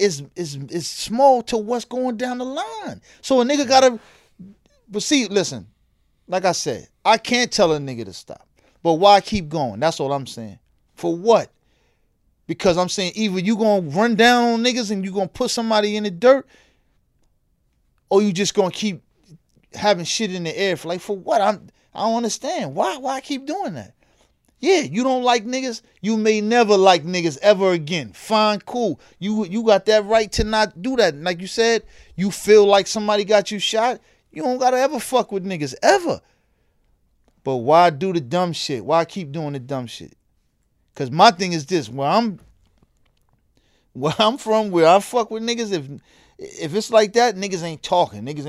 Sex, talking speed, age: male, 195 wpm, 30-49